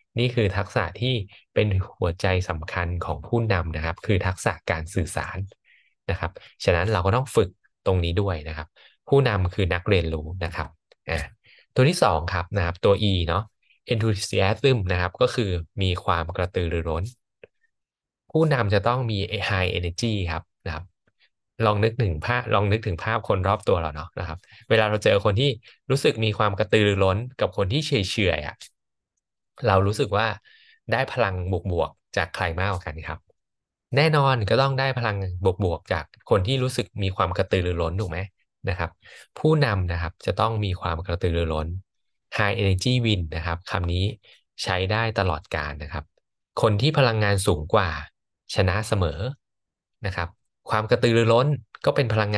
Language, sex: Thai, male